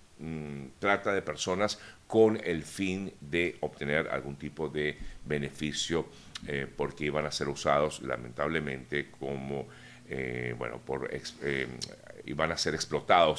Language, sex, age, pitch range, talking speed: Spanish, male, 50-69, 75-105 Hz, 125 wpm